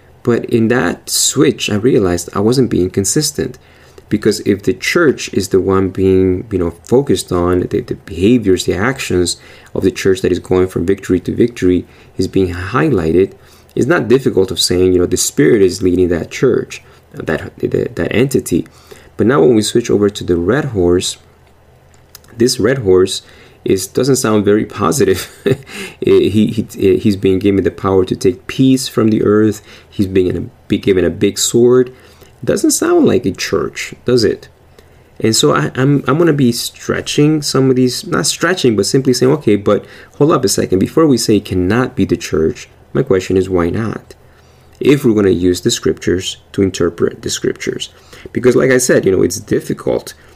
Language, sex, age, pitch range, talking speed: English, male, 20-39, 90-125 Hz, 180 wpm